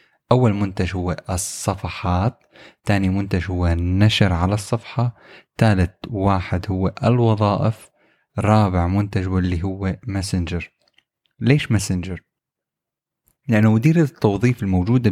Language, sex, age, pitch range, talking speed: Arabic, male, 20-39, 95-115 Hz, 105 wpm